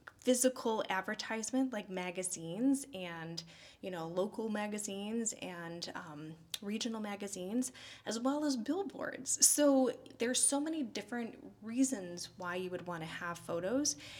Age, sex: 20-39, female